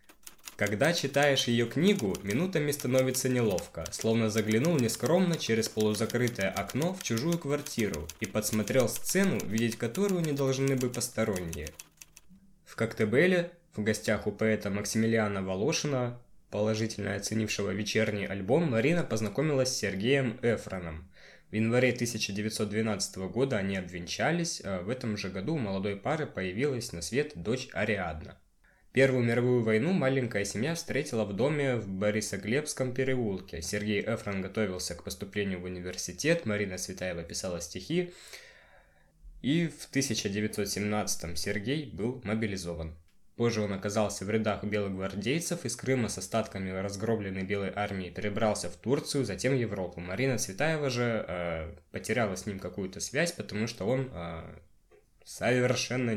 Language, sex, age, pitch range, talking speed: Russian, male, 20-39, 100-130 Hz, 130 wpm